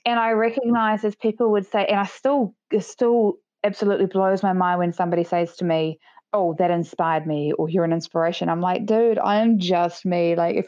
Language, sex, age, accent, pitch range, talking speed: English, female, 20-39, Australian, 180-220 Hz, 215 wpm